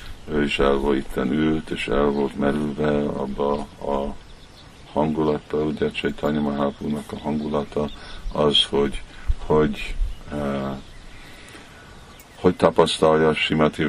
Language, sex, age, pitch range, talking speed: Hungarian, male, 50-69, 70-75 Hz, 115 wpm